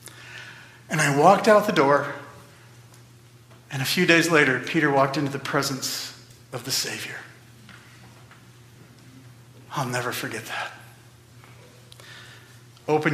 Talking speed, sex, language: 110 wpm, male, English